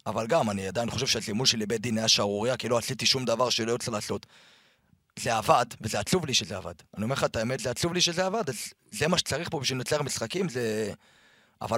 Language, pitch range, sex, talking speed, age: Hebrew, 115-170 Hz, male, 235 wpm, 30-49